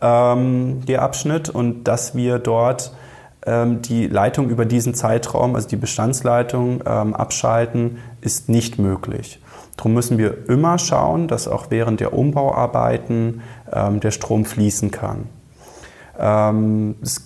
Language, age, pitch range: German, 20-39, 110-130 Hz